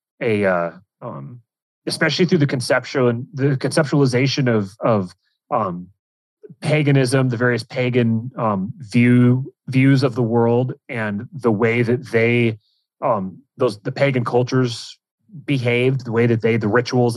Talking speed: 140 wpm